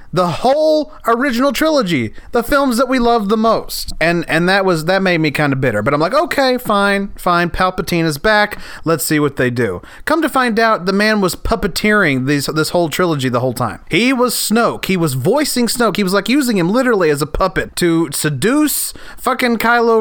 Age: 30-49